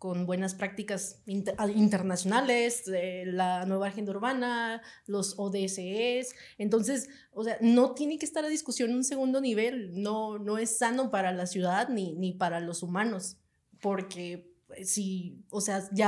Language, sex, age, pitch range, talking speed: Spanish, female, 30-49, 185-230 Hz, 155 wpm